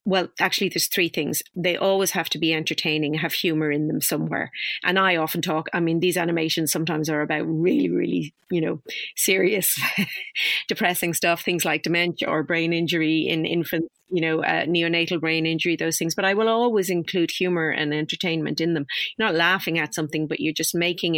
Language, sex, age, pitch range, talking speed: English, female, 40-59, 160-185 Hz, 195 wpm